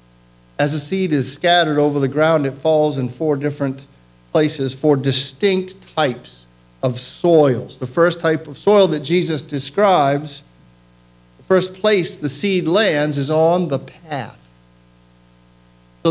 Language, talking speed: English, 140 wpm